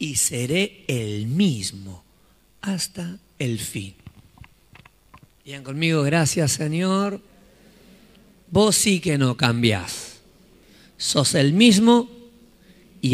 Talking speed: 90 wpm